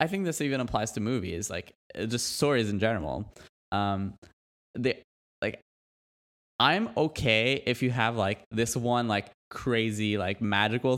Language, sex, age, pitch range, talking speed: English, male, 20-39, 105-135 Hz, 150 wpm